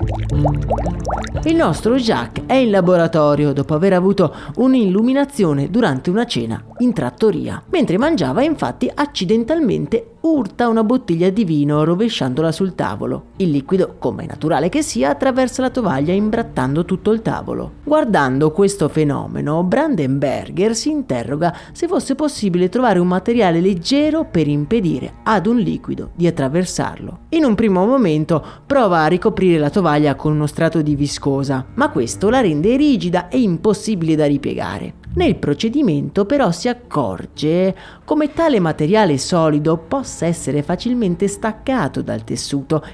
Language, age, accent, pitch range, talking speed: Italian, 30-49, native, 150-230 Hz, 140 wpm